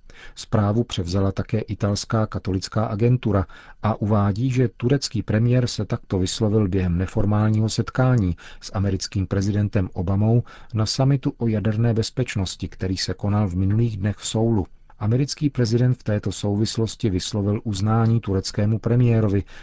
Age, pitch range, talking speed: 40-59, 95-115 Hz, 130 wpm